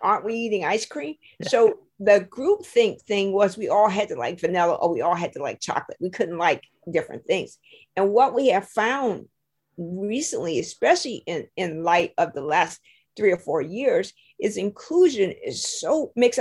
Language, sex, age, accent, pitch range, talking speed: English, female, 50-69, American, 190-240 Hz, 185 wpm